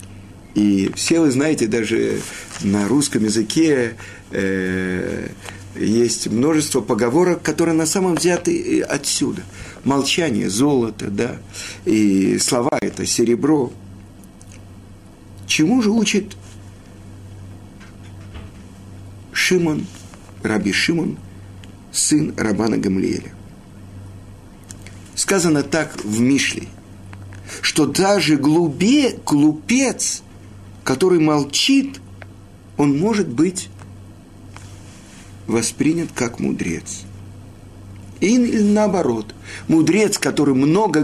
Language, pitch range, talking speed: Russian, 100-150 Hz, 80 wpm